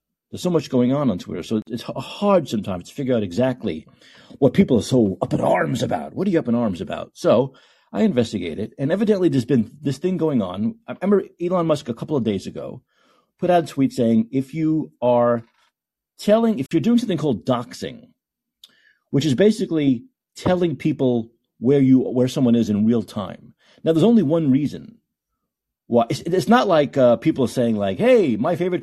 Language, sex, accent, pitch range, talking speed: English, male, American, 120-175 Hz, 195 wpm